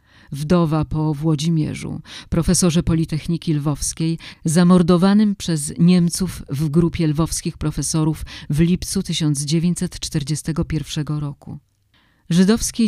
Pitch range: 145-180 Hz